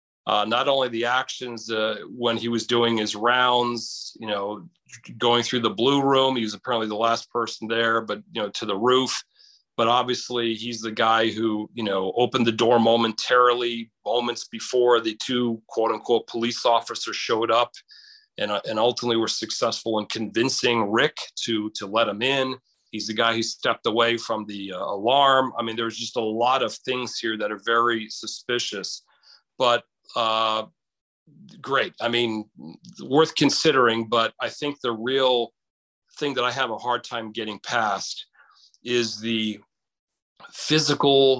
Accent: American